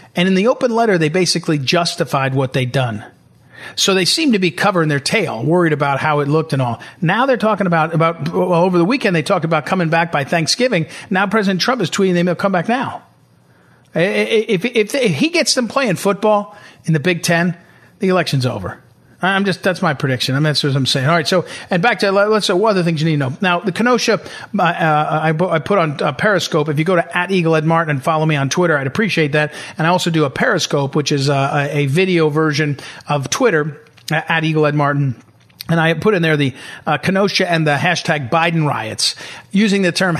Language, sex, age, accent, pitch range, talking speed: English, male, 40-59, American, 150-190 Hz, 230 wpm